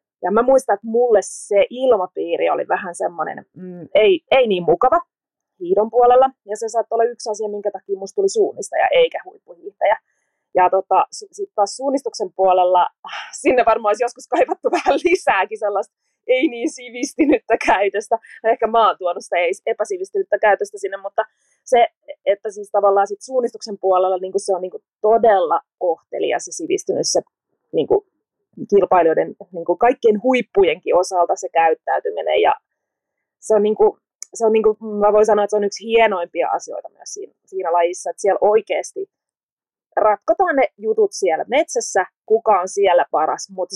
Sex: female